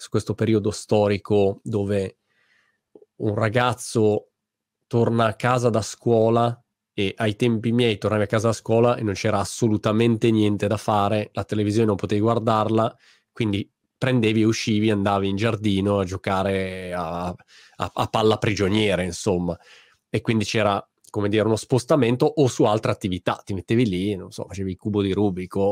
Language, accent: Italian, native